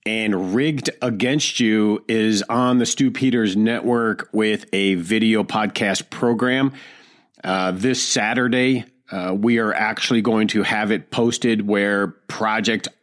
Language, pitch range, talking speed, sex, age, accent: English, 105-125 Hz, 135 wpm, male, 40-59, American